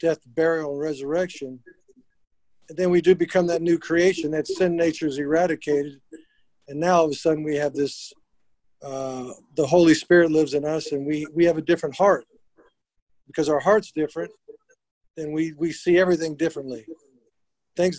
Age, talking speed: 50-69, 170 wpm